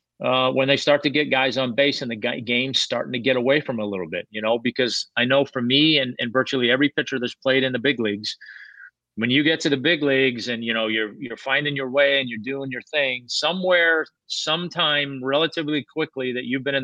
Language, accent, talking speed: English, American, 235 wpm